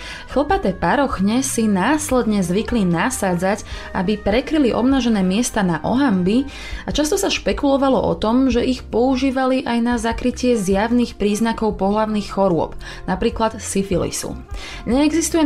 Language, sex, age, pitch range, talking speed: Slovak, female, 20-39, 195-255 Hz, 120 wpm